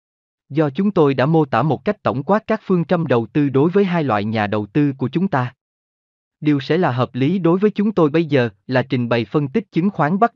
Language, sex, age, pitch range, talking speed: Vietnamese, male, 20-39, 115-170 Hz, 255 wpm